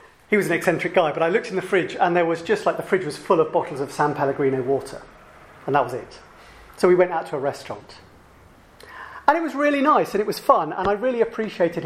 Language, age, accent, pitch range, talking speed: English, 40-59, British, 150-225 Hz, 255 wpm